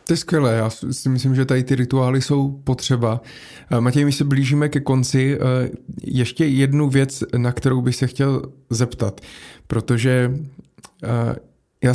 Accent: native